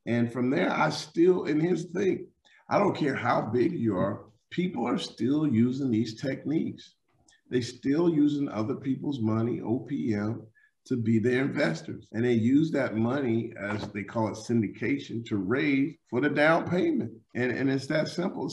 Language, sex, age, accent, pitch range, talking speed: English, male, 40-59, American, 110-140 Hz, 175 wpm